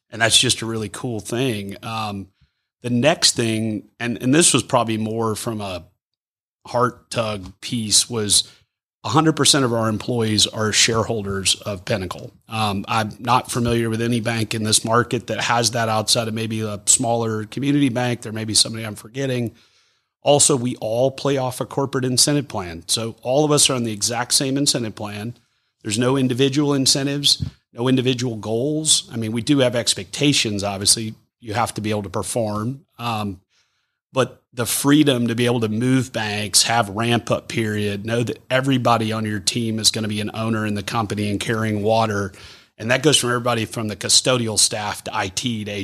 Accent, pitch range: American, 105-125 Hz